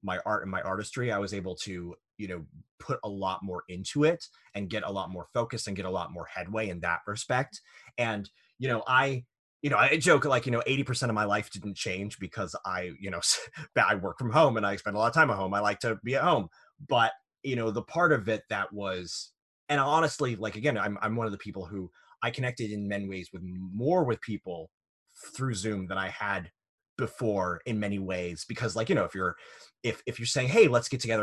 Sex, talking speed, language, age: male, 240 wpm, English, 30-49